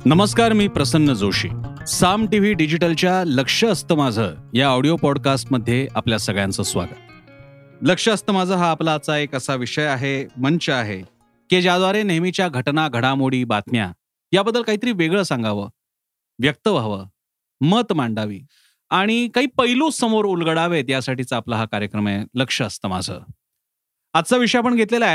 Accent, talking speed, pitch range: native, 140 wpm, 120-185 Hz